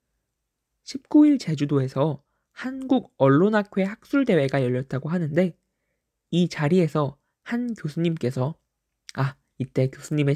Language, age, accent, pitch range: Korean, 20-39, native, 140-200 Hz